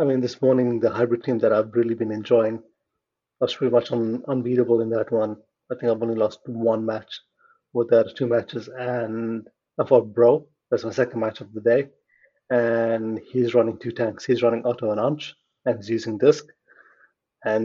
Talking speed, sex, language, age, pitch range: 195 wpm, male, English, 30-49, 115-130 Hz